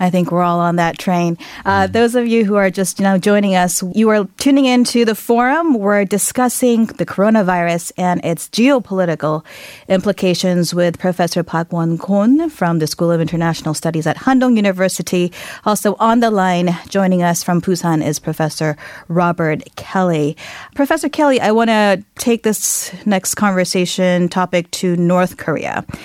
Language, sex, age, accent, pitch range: Korean, female, 30-49, American, 165-205 Hz